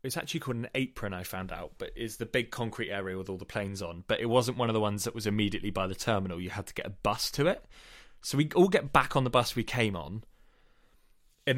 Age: 20-39